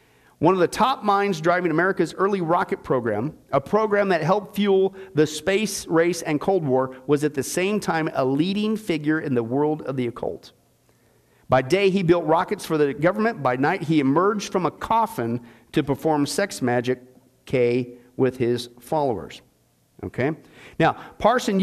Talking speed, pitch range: 170 wpm, 135-195 Hz